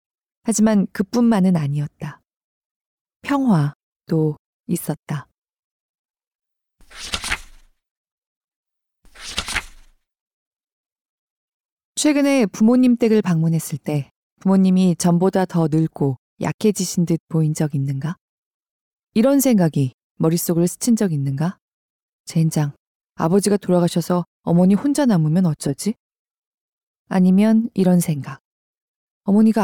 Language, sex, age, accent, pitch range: Korean, female, 20-39, native, 160-220 Hz